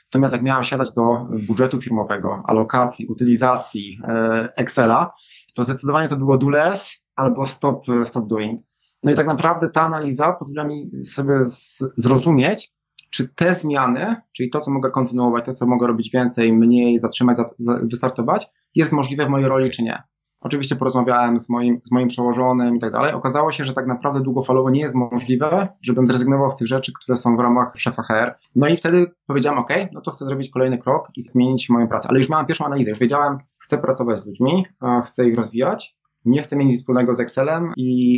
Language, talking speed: Polish, 195 wpm